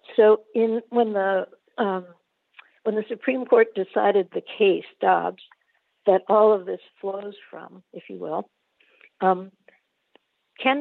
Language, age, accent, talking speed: English, 60-79, American, 135 wpm